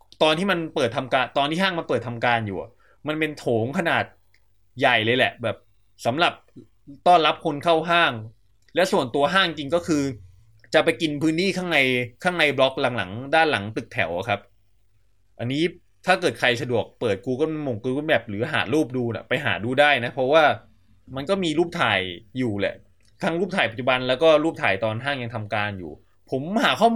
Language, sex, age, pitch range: English, male, 20-39, 115-160 Hz